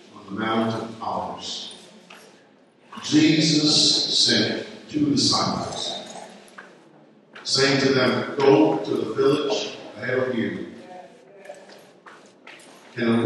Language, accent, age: English, American, 50-69